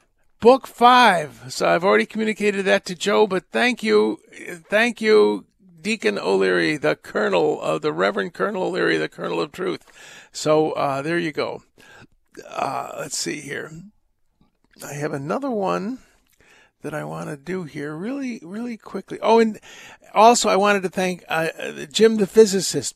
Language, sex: English, male